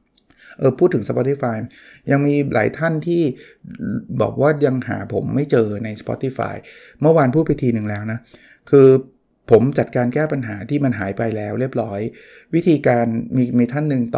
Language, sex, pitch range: Thai, male, 115-140 Hz